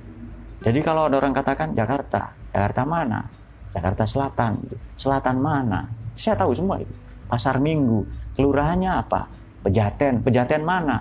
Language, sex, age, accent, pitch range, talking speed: Indonesian, male, 30-49, native, 100-130 Hz, 125 wpm